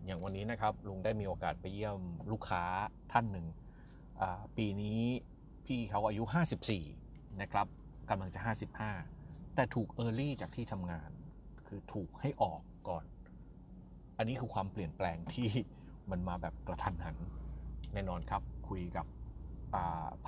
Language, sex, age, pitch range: Thai, male, 30-49, 85-115 Hz